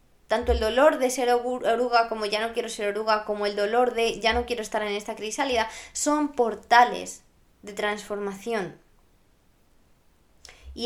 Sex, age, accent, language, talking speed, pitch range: female, 20-39, Spanish, Spanish, 155 wpm, 195-240 Hz